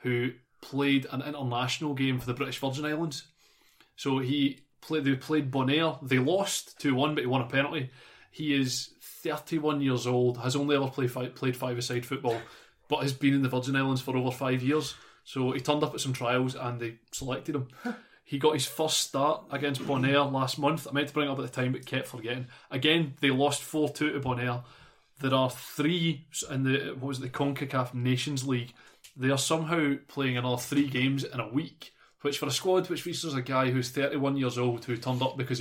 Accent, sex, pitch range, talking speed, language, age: British, male, 125-145 Hz, 215 wpm, English, 20-39